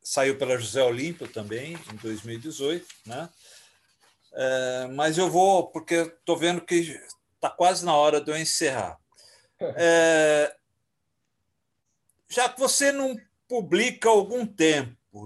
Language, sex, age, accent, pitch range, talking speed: Portuguese, male, 50-69, Brazilian, 130-180 Hz, 125 wpm